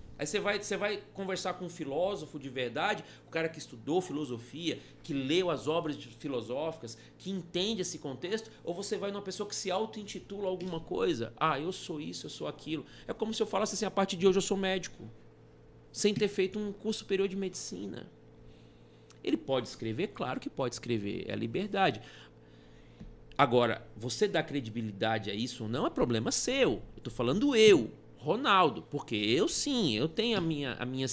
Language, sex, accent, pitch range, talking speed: Portuguese, male, Brazilian, 120-185 Hz, 185 wpm